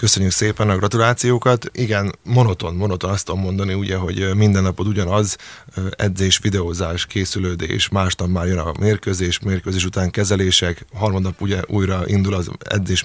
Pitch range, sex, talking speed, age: 90-105 Hz, male, 145 wpm, 30-49